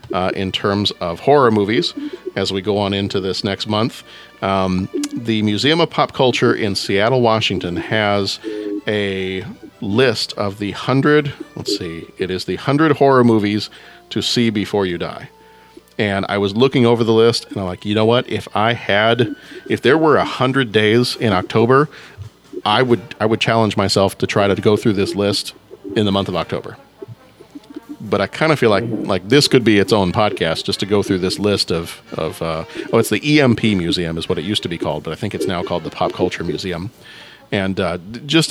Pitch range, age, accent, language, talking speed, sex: 100-120 Hz, 40-59, American, English, 205 wpm, male